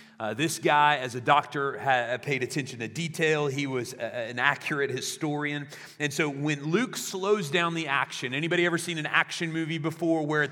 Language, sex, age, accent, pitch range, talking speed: English, male, 40-59, American, 145-170 Hz, 185 wpm